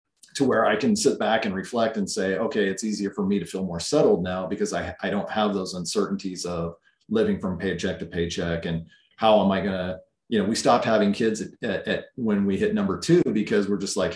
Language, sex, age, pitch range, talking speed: English, male, 40-59, 90-110 Hz, 235 wpm